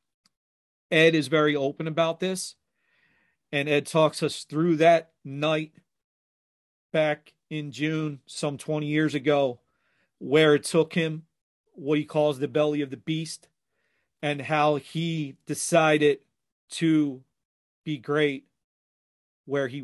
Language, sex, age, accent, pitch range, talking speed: English, male, 40-59, American, 140-160 Hz, 125 wpm